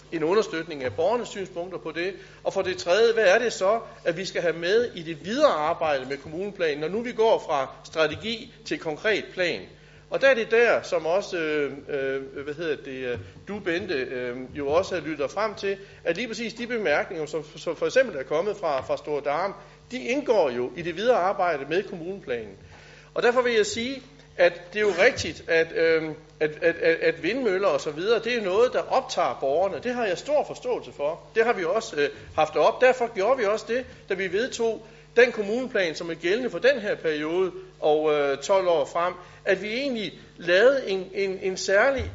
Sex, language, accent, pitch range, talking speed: male, Danish, native, 165-255 Hz, 210 wpm